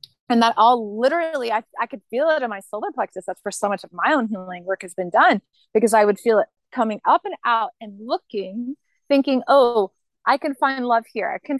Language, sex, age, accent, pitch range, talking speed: English, female, 30-49, American, 195-260 Hz, 235 wpm